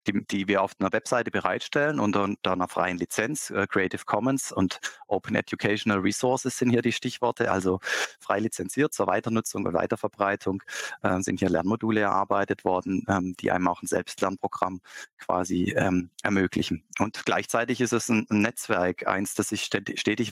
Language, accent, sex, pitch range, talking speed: German, German, male, 95-115 Hz, 165 wpm